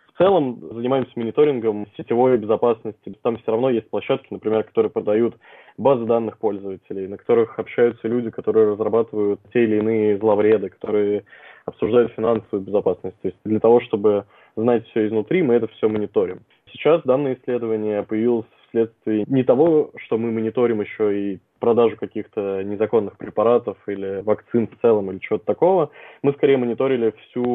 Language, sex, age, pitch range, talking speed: Russian, male, 20-39, 105-120 Hz, 150 wpm